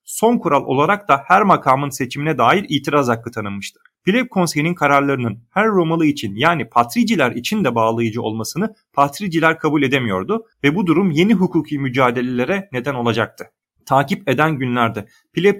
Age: 40-59